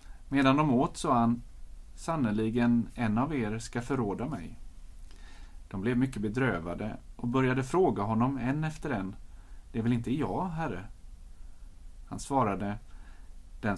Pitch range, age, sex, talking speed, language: 90-130 Hz, 30-49, male, 140 wpm, Swedish